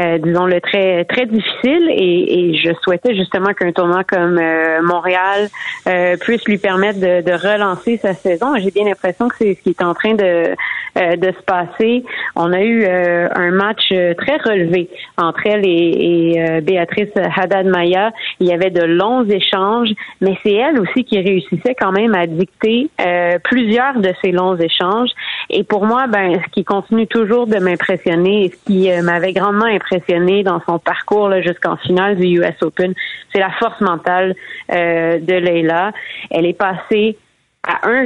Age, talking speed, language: 30-49, 180 wpm, French